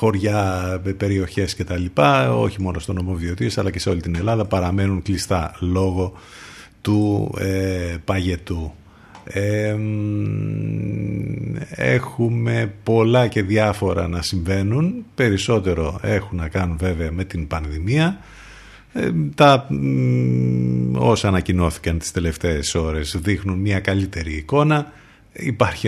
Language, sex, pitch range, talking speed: Greek, male, 90-110 Hz, 115 wpm